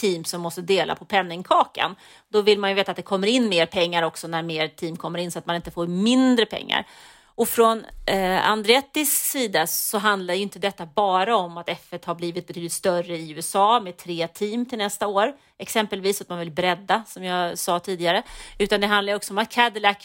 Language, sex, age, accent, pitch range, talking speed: English, female, 30-49, Swedish, 175-205 Hz, 220 wpm